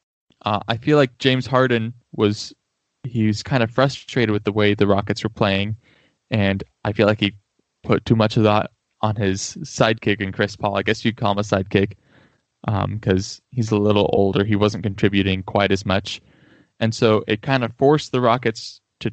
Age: 20-39